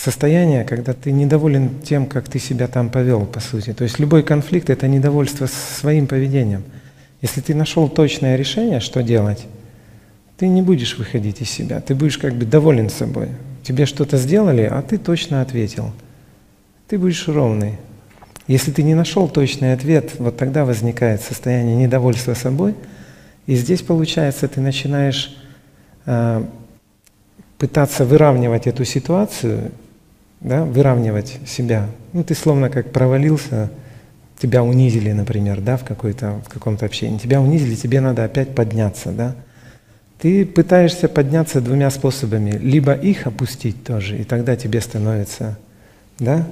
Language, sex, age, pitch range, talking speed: Russian, male, 40-59, 115-145 Hz, 135 wpm